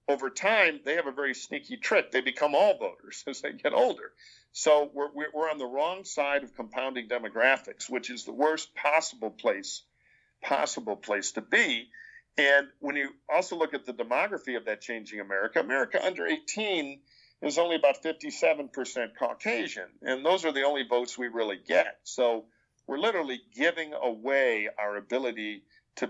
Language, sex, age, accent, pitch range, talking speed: English, male, 50-69, American, 115-155 Hz, 170 wpm